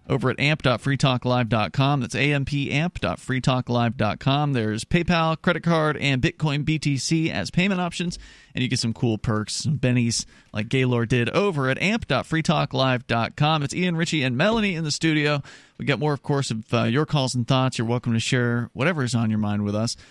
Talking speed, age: 175 wpm, 40-59